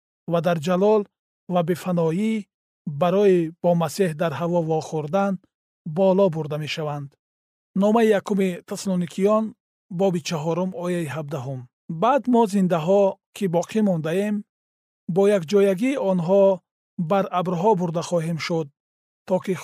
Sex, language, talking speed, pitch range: male, Persian, 130 wpm, 165-205 Hz